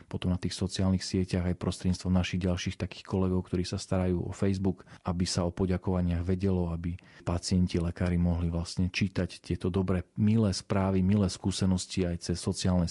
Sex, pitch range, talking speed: male, 90-100 Hz, 165 wpm